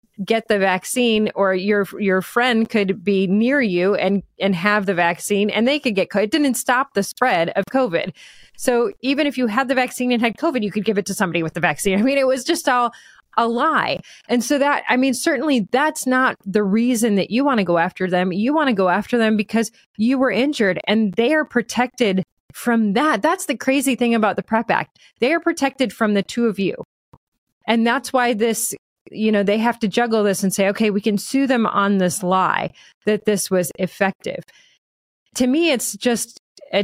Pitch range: 195-245 Hz